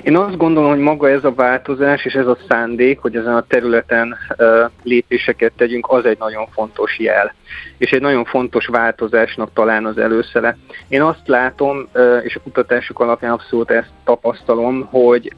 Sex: male